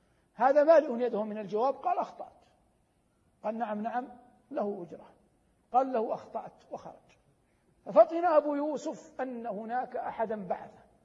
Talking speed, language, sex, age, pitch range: 125 wpm, Arabic, male, 60-79, 190-255 Hz